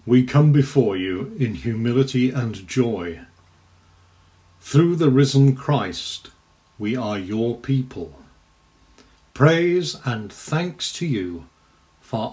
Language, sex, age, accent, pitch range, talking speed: English, male, 50-69, British, 90-135 Hz, 105 wpm